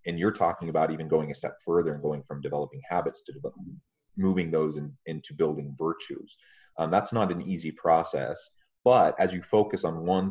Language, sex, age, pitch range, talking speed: English, male, 30-49, 80-120 Hz, 200 wpm